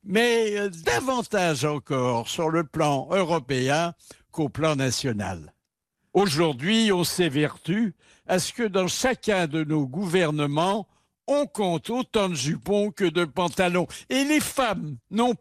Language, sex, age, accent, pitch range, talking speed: French, male, 60-79, French, 150-195 Hz, 130 wpm